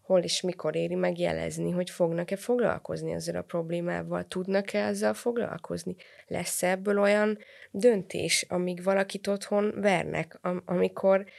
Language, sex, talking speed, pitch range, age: Hungarian, female, 120 wpm, 150-195 Hz, 20-39